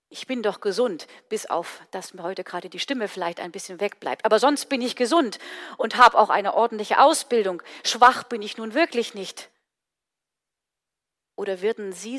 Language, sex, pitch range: German, female, 195-250 Hz